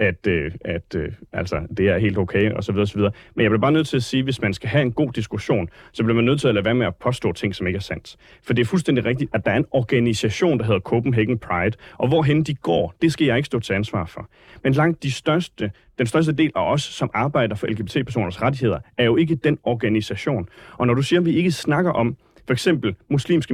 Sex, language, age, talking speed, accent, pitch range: male, Danish, 30-49, 250 wpm, native, 105-140 Hz